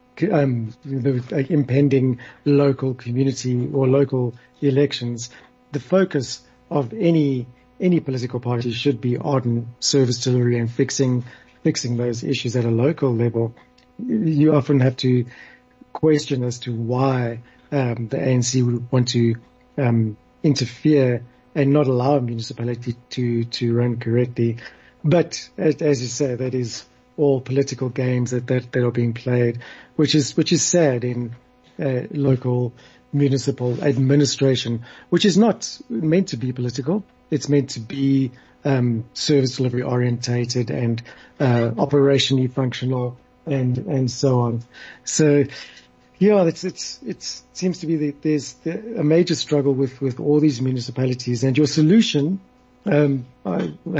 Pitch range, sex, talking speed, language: 125-145 Hz, male, 140 wpm, English